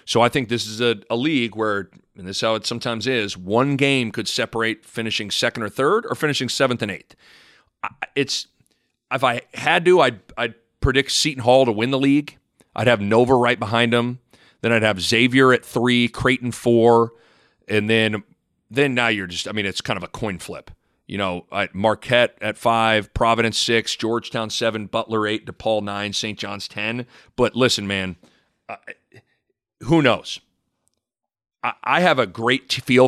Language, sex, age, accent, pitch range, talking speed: English, male, 40-59, American, 105-125 Hz, 180 wpm